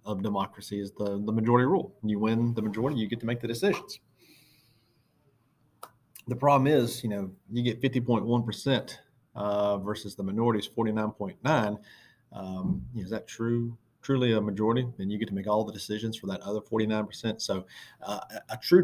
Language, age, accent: English, 40-59, American